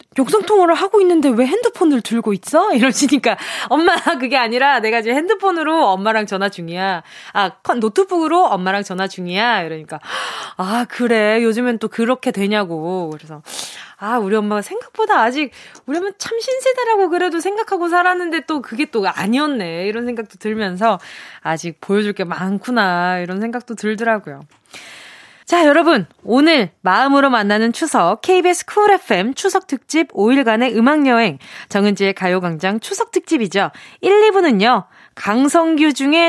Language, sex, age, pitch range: Korean, female, 20-39, 205-340 Hz